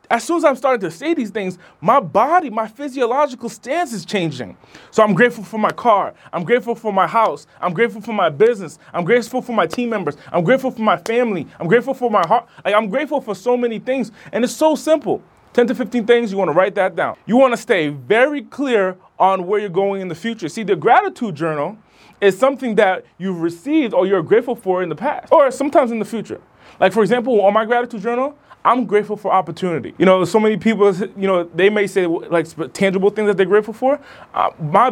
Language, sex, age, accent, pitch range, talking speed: English, male, 20-39, American, 185-245 Hz, 225 wpm